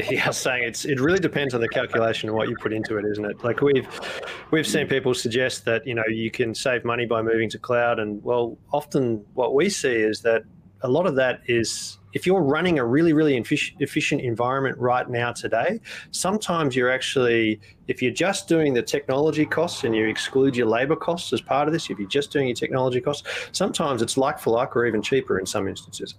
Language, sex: English, male